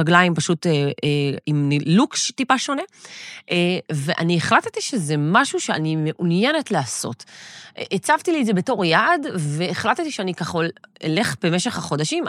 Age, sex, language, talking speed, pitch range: 30-49, female, Hebrew, 135 wpm, 155-215 Hz